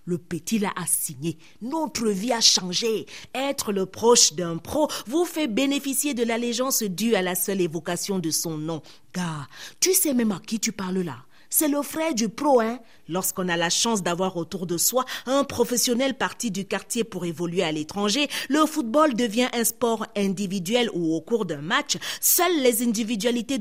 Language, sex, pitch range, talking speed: French, female, 185-270 Hz, 185 wpm